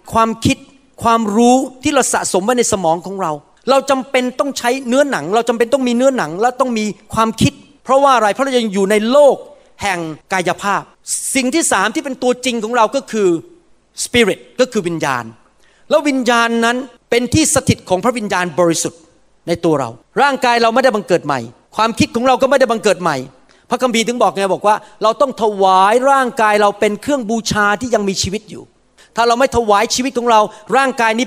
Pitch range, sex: 195-255 Hz, male